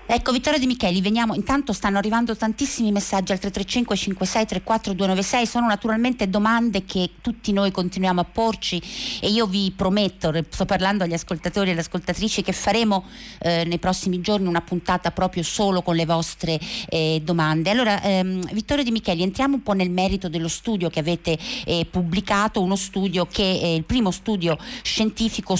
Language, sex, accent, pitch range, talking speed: Italian, female, native, 175-215 Hz, 165 wpm